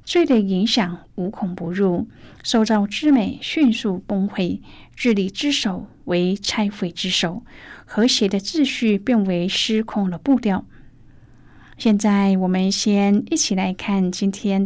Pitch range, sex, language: 190-225 Hz, female, Chinese